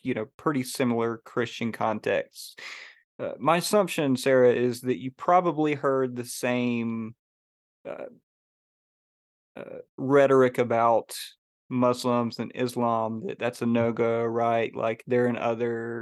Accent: American